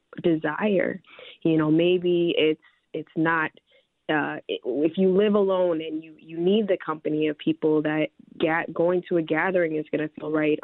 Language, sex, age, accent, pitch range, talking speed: English, female, 20-39, American, 155-185 Hz, 185 wpm